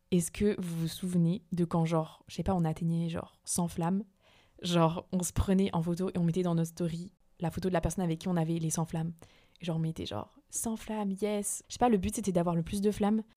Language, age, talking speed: French, 20-39, 265 wpm